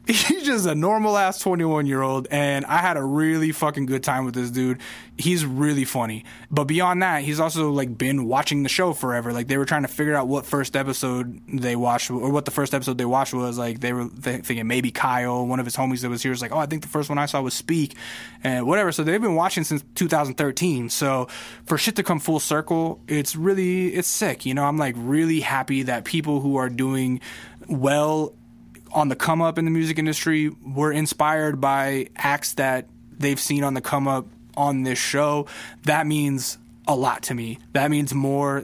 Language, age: English, 20-39